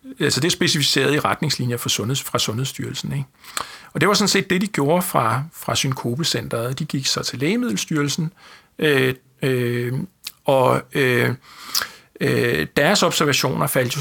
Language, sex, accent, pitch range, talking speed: Danish, male, native, 130-160 Hz, 160 wpm